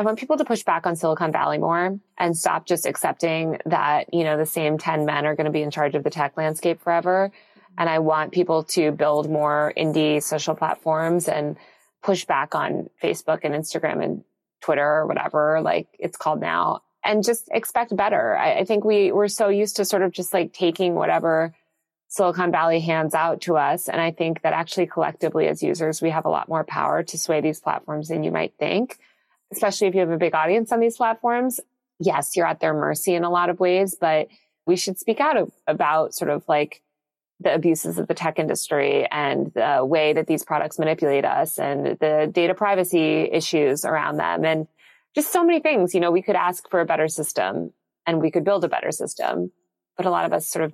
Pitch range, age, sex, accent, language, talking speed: 155-190 Hz, 20-39, female, American, English, 215 wpm